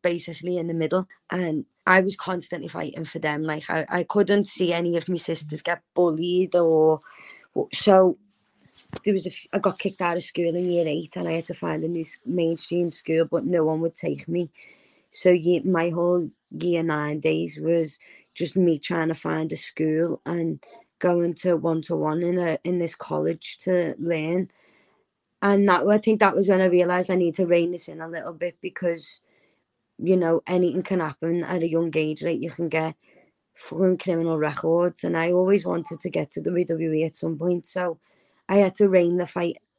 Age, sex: 20-39, female